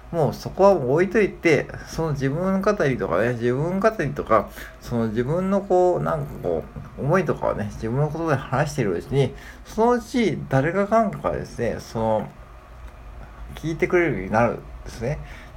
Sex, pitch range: male, 95-150 Hz